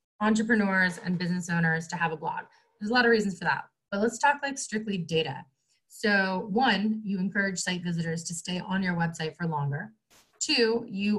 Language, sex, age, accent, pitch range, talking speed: English, female, 20-39, American, 165-220 Hz, 195 wpm